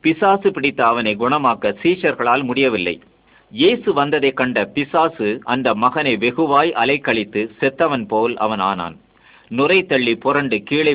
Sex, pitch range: male, 115-155 Hz